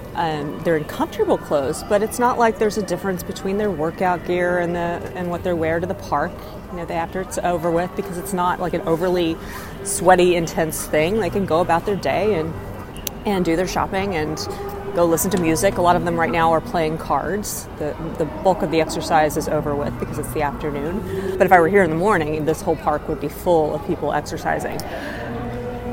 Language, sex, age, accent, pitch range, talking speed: English, female, 30-49, American, 165-200 Hz, 215 wpm